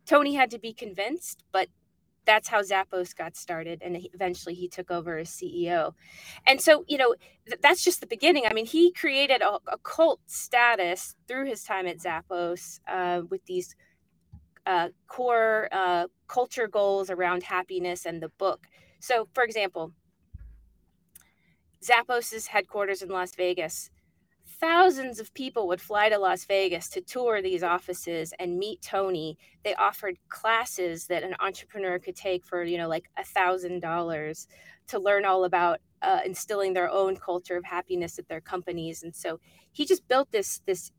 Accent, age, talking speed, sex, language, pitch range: American, 30-49, 165 wpm, female, English, 175-235 Hz